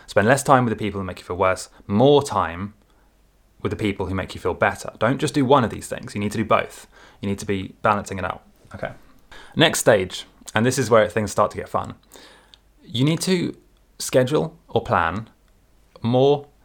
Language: English